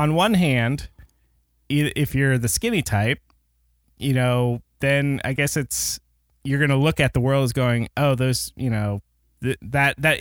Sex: male